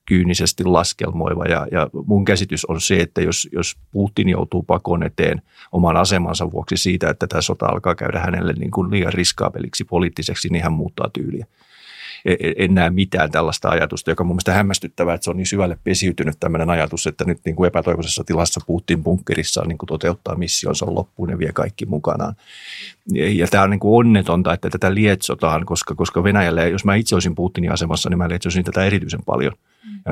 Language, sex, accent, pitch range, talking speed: Finnish, male, native, 85-95 Hz, 180 wpm